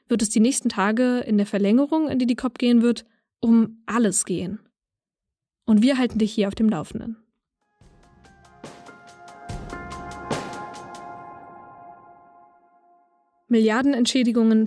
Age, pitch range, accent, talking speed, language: 20-39, 215-255 Hz, German, 105 wpm, German